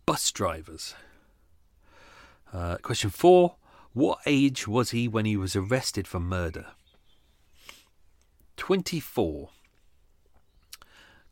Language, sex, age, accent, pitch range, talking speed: English, male, 40-59, British, 85-115 Hz, 85 wpm